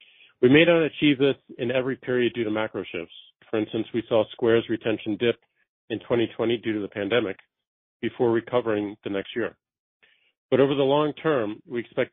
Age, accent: 40-59, American